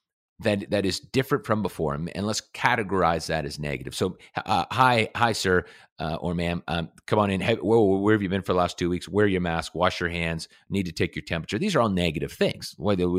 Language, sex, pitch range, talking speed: English, male, 85-130 Hz, 230 wpm